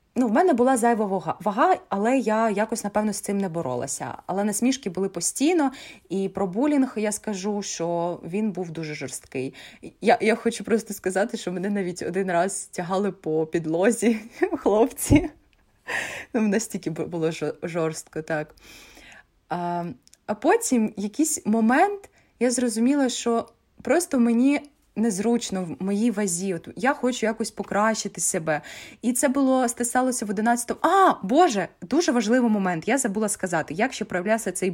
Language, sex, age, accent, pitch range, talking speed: Ukrainian, female, 20-39, native, 185-245 Hz, 150 wpm